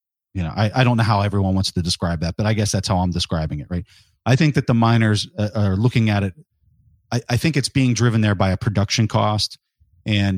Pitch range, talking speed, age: 95-120 Hz, 250 wpm, 30-49